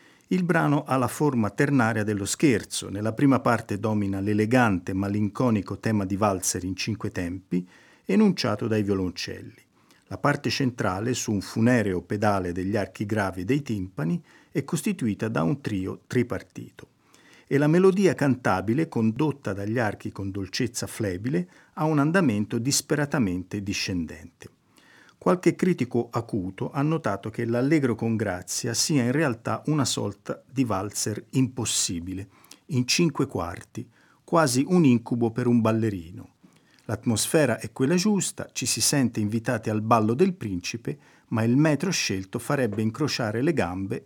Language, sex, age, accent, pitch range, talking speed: Italian, male, 50-69, native, 100-140 Hz, 140 wpm